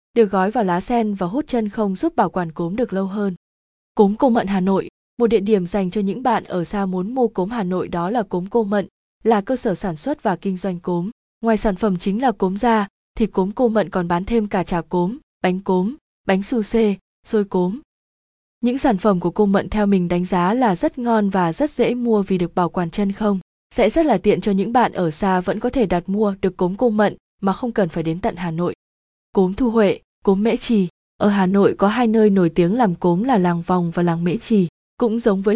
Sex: female